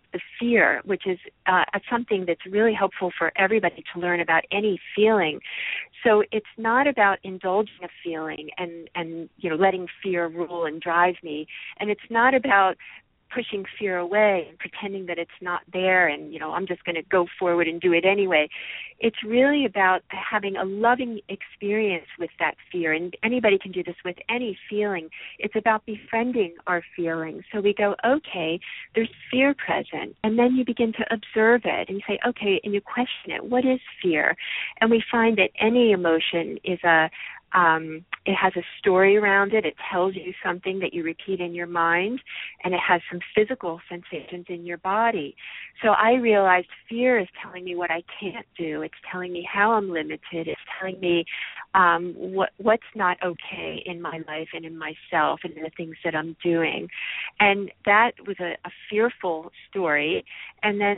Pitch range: 170-215 Hz